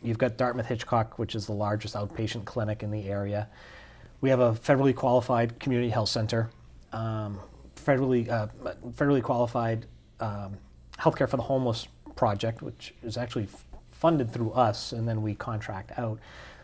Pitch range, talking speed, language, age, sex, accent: 110-125 Hz, 160 wpm, English, 30-49, male, American